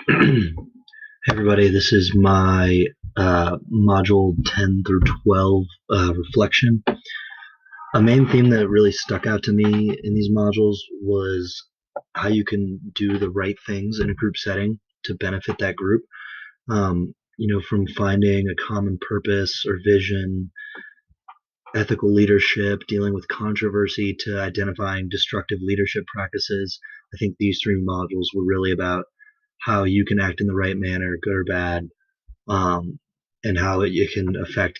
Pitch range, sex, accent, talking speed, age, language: 95-105 Hz, male, American, 150 wpm, 30-49, English